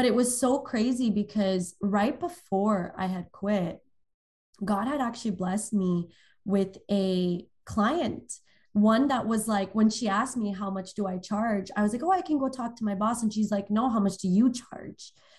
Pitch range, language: 195-235 Hz, English